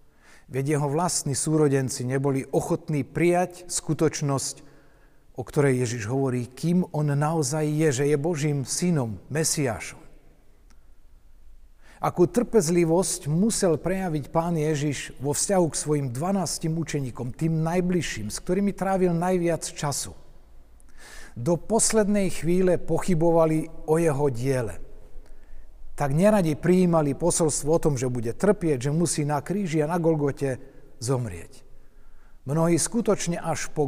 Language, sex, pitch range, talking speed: Slovak, male, 125-165 Hz, 120 wpm